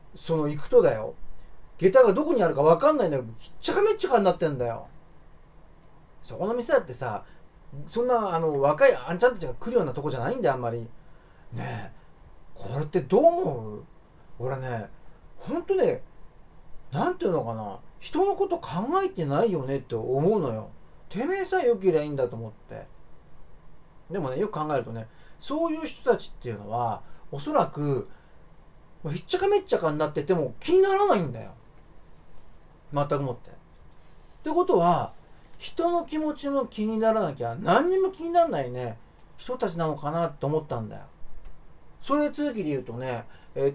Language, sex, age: Japanese, male, 40-59